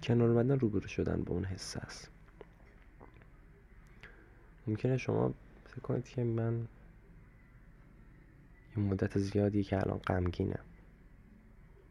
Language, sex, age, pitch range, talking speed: Persian, male, 20-39, 95-125 Hz, 90 wpm